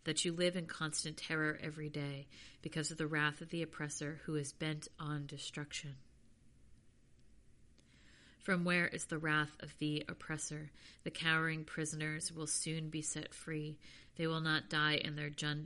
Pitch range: 150-165 Hz